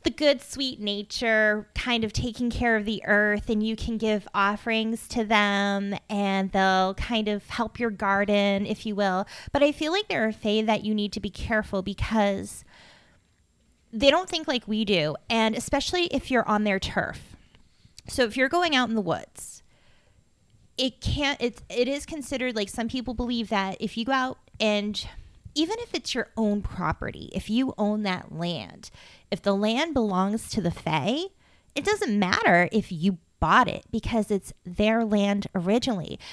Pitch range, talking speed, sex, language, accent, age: 205-250 Hz, 180 wpm, female, English, American, 20-39